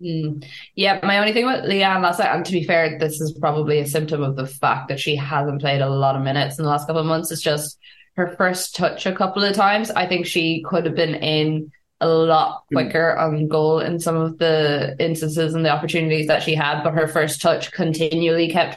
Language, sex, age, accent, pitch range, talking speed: English, female, 20-39, Irish, 150-175 Hz, 230 wpm